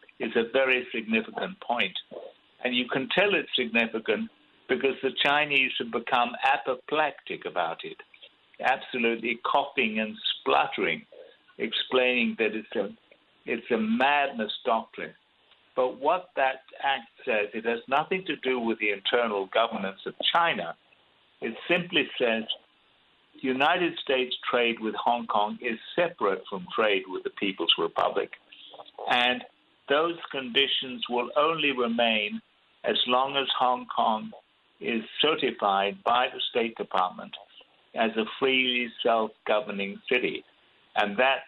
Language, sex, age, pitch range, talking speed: English, male, 60-79, 110-145 Hz, 130 wpm